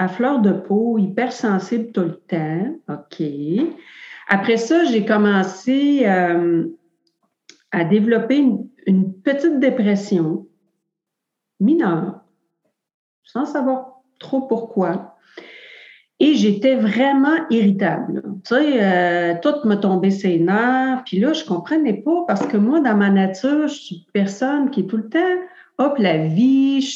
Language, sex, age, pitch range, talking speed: French, female, 50-69, 185-260 Hz, 135 wpm